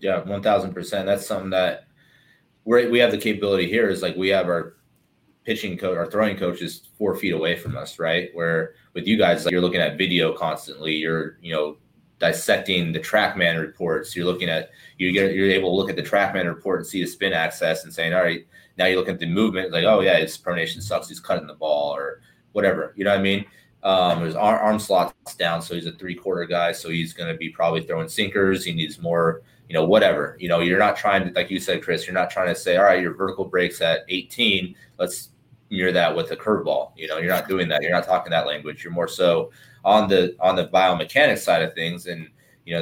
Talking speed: 235 wpm